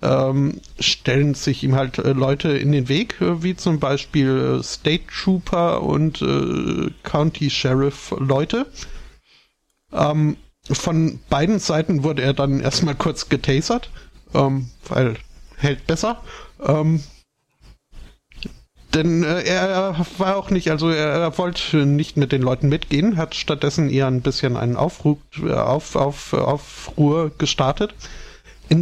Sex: male